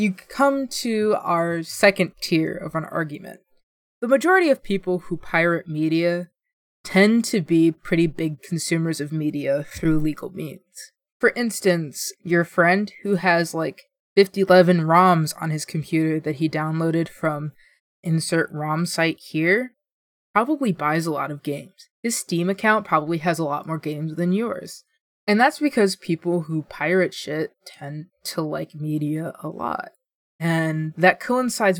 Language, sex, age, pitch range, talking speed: English, female, 20-39, 160-195 Hz, 150 wpm